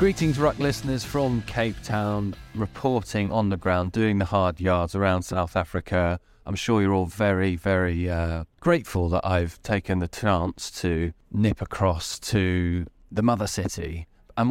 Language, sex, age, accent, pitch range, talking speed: English, male, 20-39, British, 95-110 Hz, 155 wpm